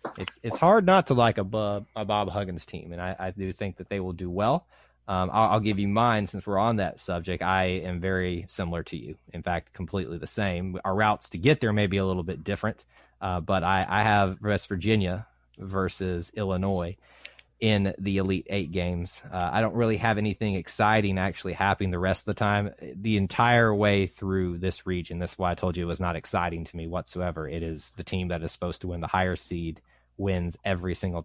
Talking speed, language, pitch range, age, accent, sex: 225 wpm, English, 90-110 Hz, 30-49, American, male